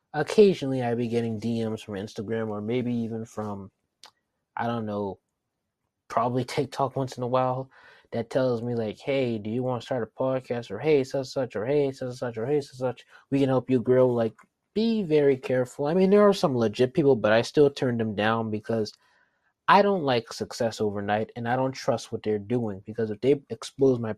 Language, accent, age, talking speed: English, American, 20-39, 210 wpm